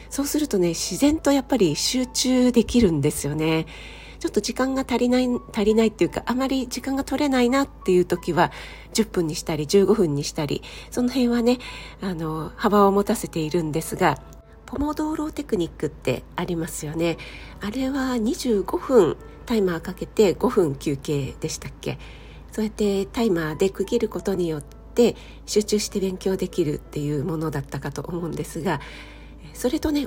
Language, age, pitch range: Japanese, 40-59, 165-240 Hz